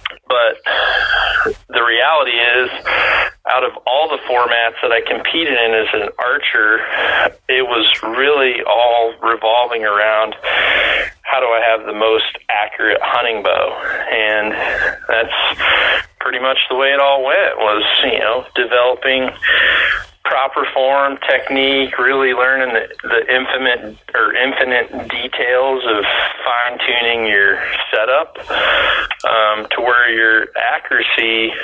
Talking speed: 120 wpm